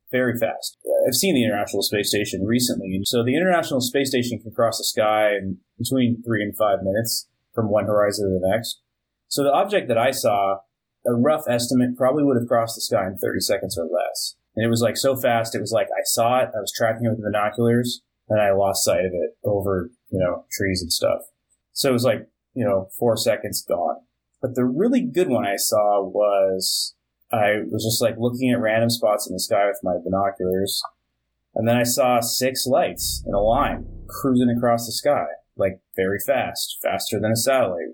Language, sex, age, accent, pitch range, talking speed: English, male, 30-49, American, 100-125 Hz, 210 wpm